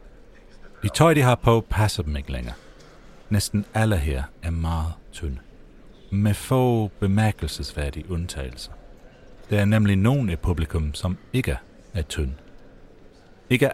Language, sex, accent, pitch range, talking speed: Danish, male, native, 80-105 Hz, 130 wpm